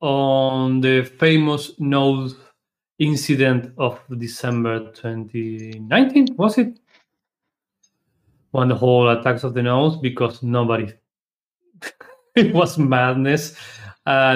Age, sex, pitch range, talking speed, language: 30-49, male, 125-165 Hz, 95 wpm, English